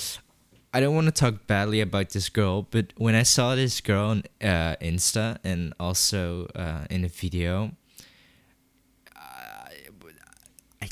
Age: 20-39